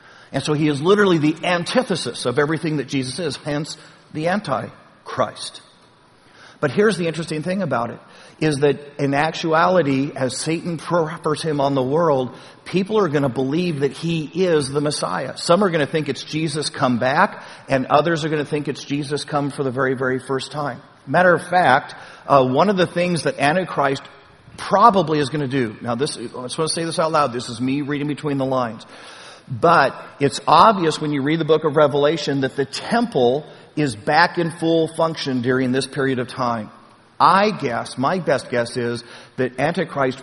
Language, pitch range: English, 130-160 Hz